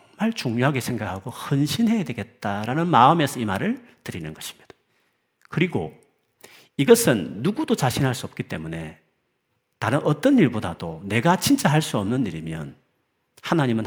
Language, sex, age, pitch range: Korean, male, 40-59, 100-155 Hz